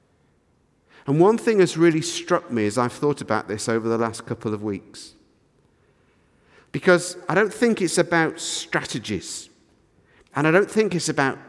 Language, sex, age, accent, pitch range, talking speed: English, male, 50-69, British, 120-165 Hz, 160 wpm